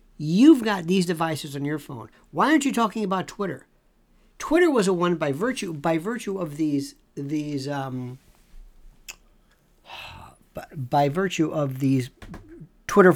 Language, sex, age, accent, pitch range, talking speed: English, male, 60-79, American, 150-205 Hz, 135 wpm